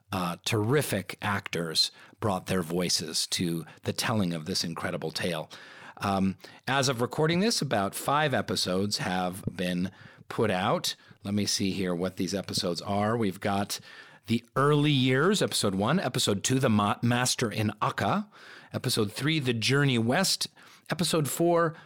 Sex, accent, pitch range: male, American, 100-145 Hz